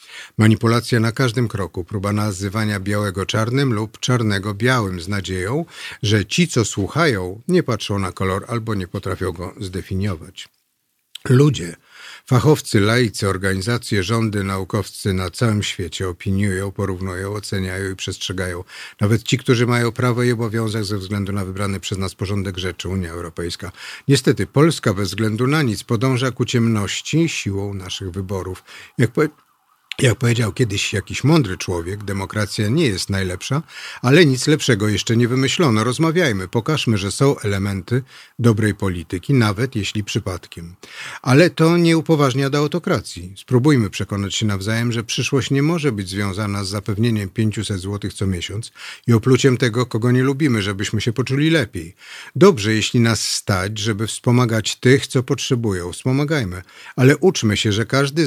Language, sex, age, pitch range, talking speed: Polish, male, 50-69, 100-130 Hz, 150 wpm